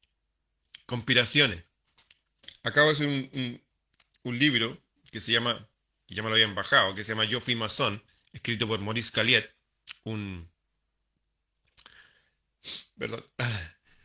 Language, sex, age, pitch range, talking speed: Spanish, male, 30-49, 105-140 Hz, 125 wpm